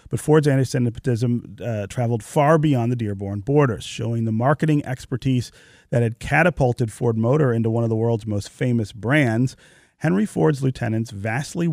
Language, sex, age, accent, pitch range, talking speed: English, male, 40-59, American, 110-140 Hz, 165 wpm